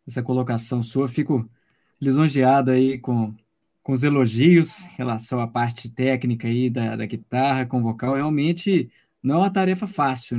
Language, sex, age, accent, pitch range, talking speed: Portuguese, male, 20-39, Brazilian, 120-145 Hz, 155 wpm